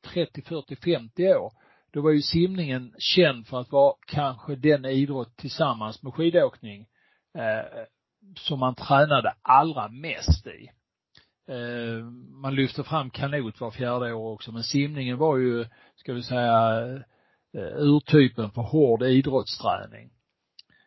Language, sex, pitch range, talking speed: Swedish, male, 115-140 Hz, 125 wpm